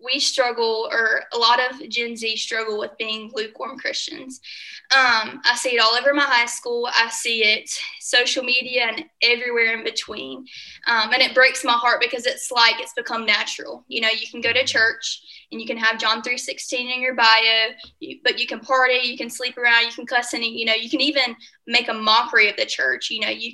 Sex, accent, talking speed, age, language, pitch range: female, American, 215 wpm, 10-29, English, 225-265 Hz